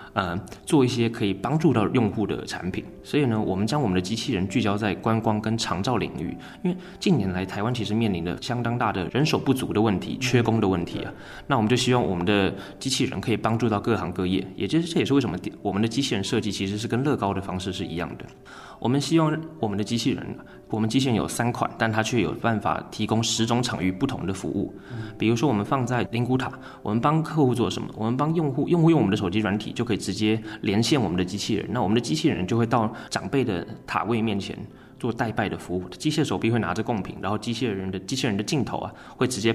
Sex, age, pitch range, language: male, 20-39, 100-125 Hz, Chinese